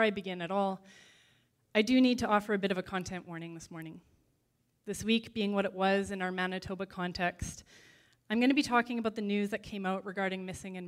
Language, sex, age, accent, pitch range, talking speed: English, female, 20-39, American, 170-200 Hz, 230 wpm